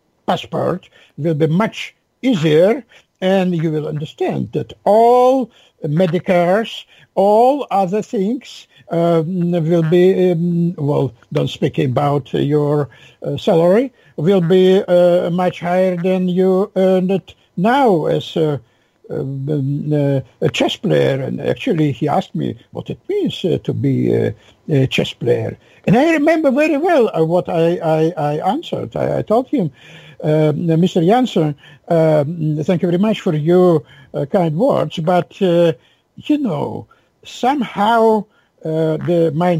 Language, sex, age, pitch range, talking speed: English, male, 60-79, 145-185 Hz, 140 wpm